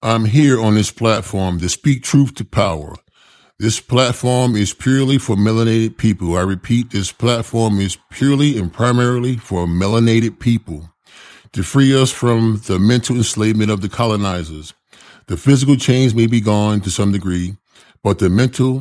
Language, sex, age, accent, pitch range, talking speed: English, male, 40-59, American, 95-120 Hz, 160 wpm